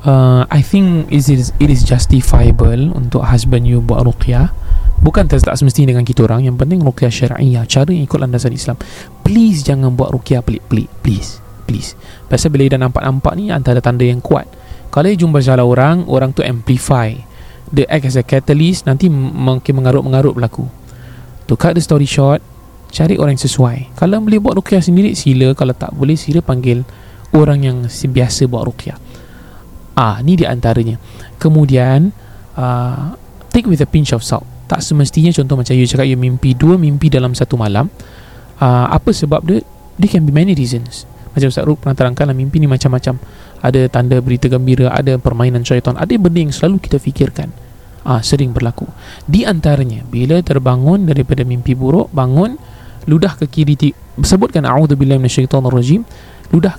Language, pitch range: Malay, 125-150 Hz